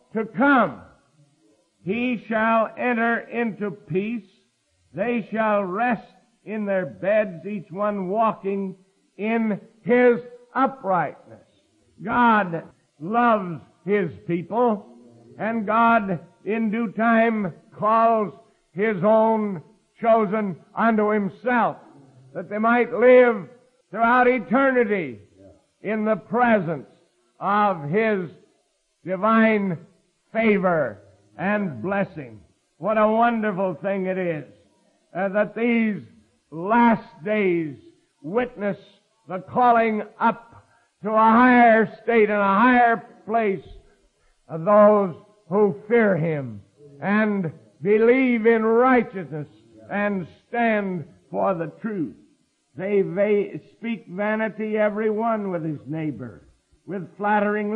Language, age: English, 50-69